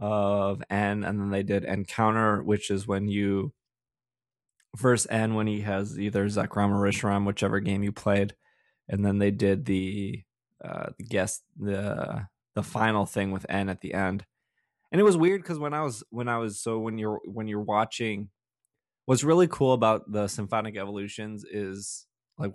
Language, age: English, 20-39